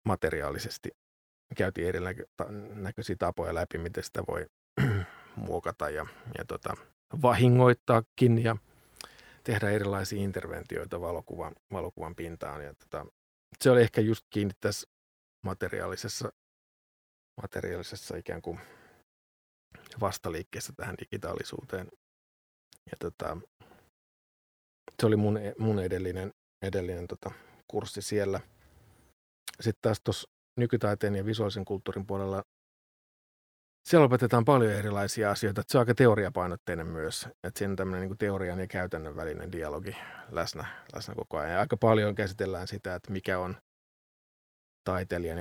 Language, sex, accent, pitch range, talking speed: Finnish, male, native, 90-110 Hz, 110 wpm